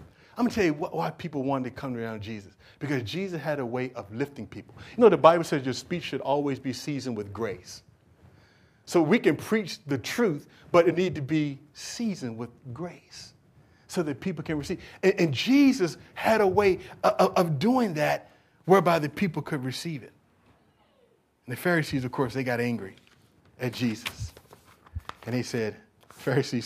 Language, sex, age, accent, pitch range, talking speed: English, male, 40-59, American, 115-165 Hz, 185 wpm